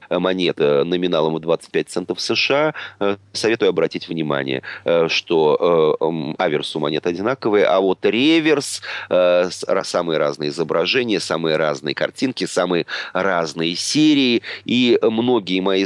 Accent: native